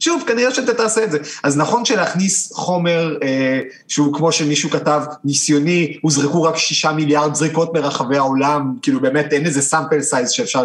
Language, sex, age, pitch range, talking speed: Hebrew, male, 30-49, 140-195 Hz, 170 wpm